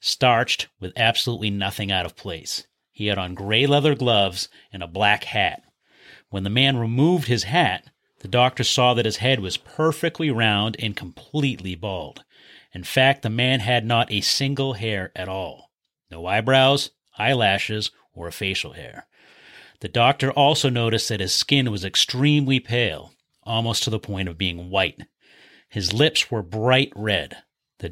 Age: 30-49